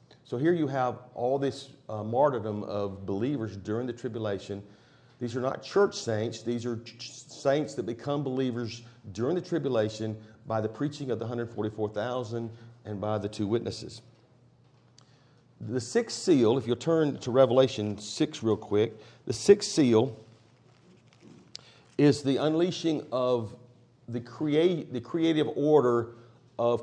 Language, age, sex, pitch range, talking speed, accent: English, 50-69, male, 110-135 Hz, 135 wpm, American